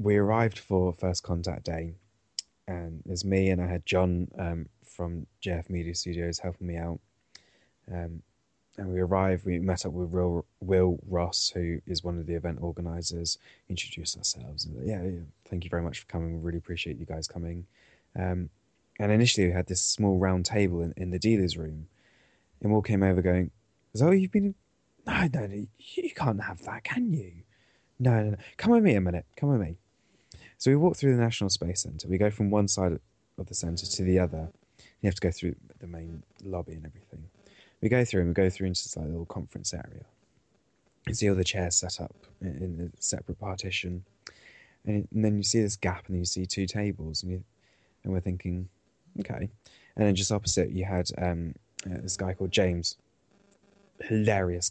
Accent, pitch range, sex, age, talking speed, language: British, 85-105 Hz, male, 20-39, 195 wpm, English